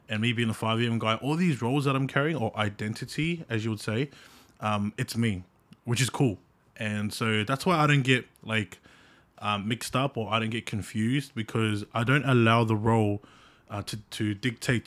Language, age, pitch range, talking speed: English, 20-39, 105-125 Hz, 205 wpm